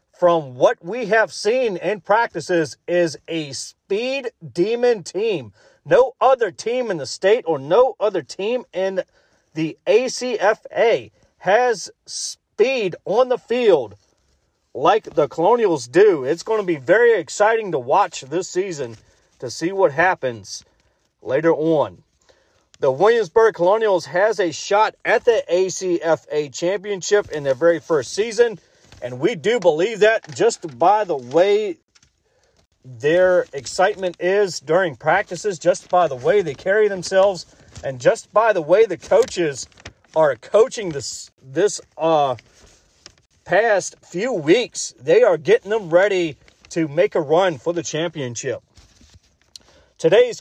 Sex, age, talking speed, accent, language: male, 40-59, 135 wpm, American, English